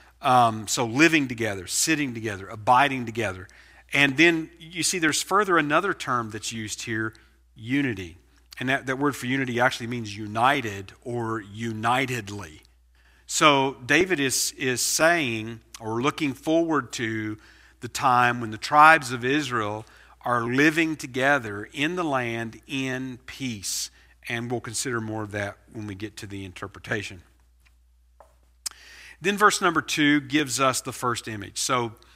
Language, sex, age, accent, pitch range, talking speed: English, male, 50-69, American, 110-145 Hz, 145 wpm